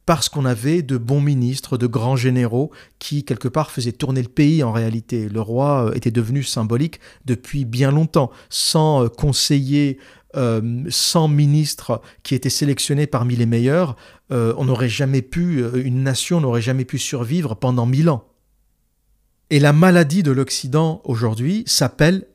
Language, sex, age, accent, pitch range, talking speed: French, male, 50-69, French, 125-155 Hz, 155 wpm